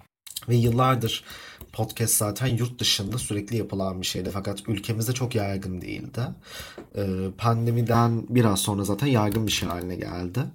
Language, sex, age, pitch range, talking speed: Turkish, male, 30-49, 95-120 Hz, 140 wpm